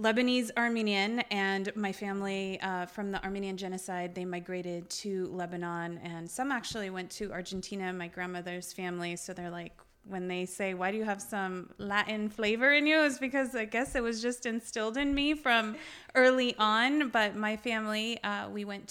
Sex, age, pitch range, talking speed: female, 20-39, 175-215 Hz, 180 wpm